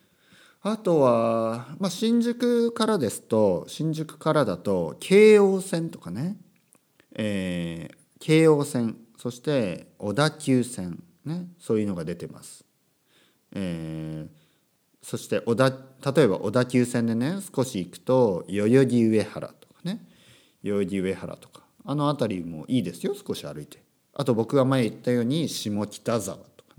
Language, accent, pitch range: Japanese, native, 100-160 Hz